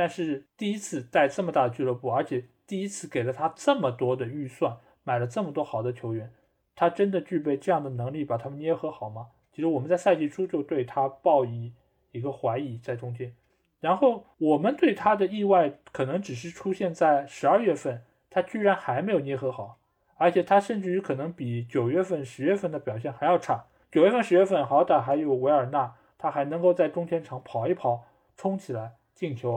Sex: male